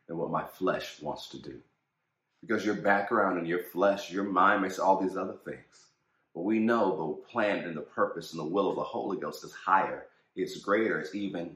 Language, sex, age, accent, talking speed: English, male, 40-59, American, 215 wpm